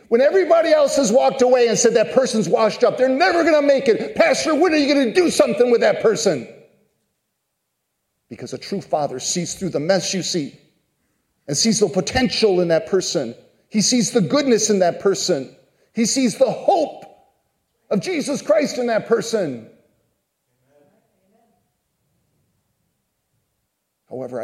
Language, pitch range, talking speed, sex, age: English, 145-235 Hz, 155 wpm, male, 40-59